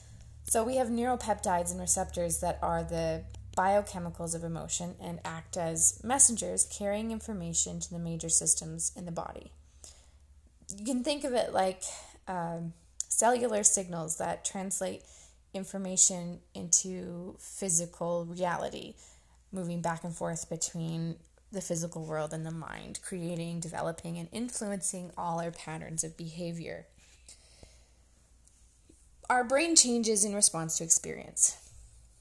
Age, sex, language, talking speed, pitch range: 20-39, female, English, 125 wpm, 165-200 Hz